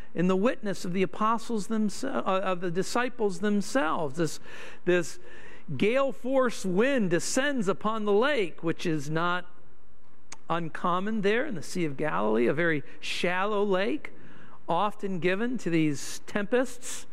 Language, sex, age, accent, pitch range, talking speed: English, male, 50-69, American, 175-240 Hz, 140 wpm